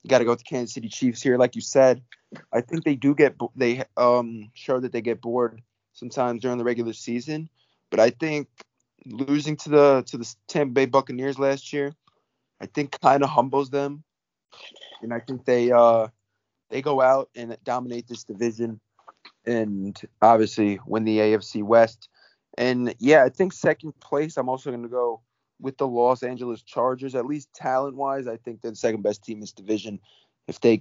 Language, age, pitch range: English, 20-39, 115-135 Hz